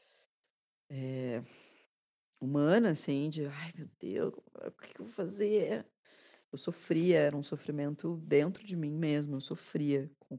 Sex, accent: female, Brazilian